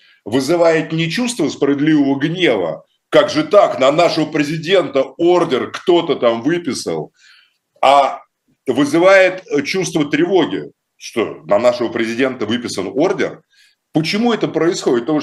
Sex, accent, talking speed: male, native, 115 wpm